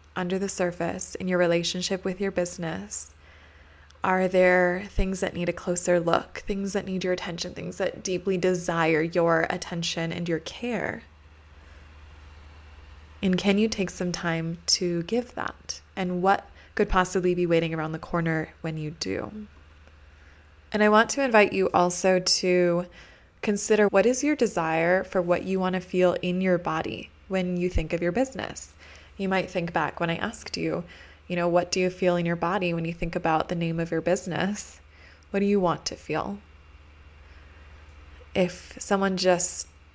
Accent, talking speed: American, 175 wpm